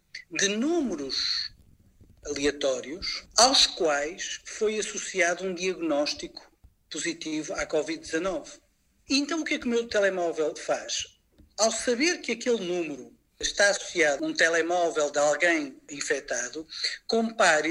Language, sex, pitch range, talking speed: Portuguese, male, 170-255 Hz, 120 wpm